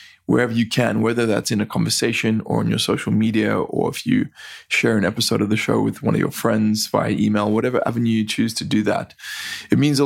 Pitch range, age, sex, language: 110-120 Hz, 20-39, male, English